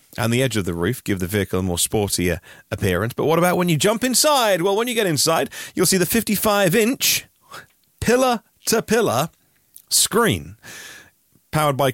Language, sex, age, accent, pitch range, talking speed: English, male, 30-49, British, 105-150 Hz, 165 wpm